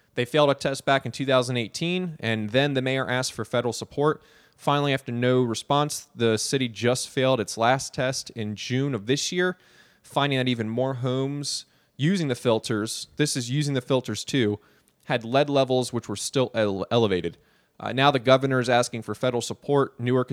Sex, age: male, 20-39